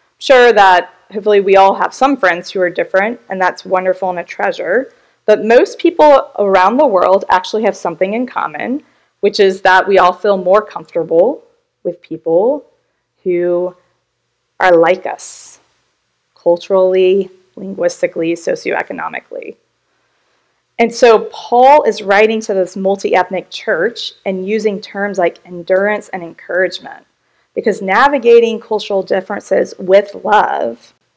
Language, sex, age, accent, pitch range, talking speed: English, female, 20-39, American, 185-240 Hz, 130 wpm